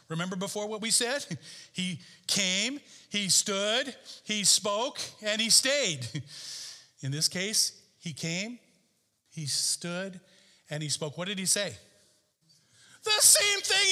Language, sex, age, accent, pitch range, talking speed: English, male, 50-69, American, 140-215 Hz, 135 wpm